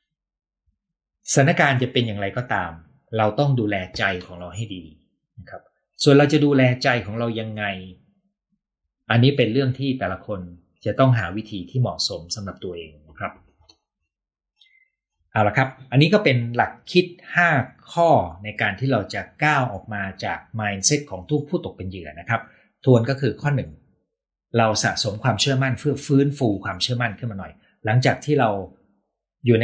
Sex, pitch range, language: male, 100-135 Hz, Thai